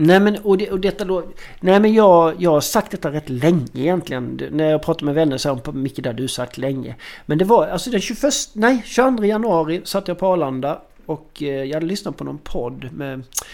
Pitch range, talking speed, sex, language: 140-185 Hz, 235 wpm, male, Swedish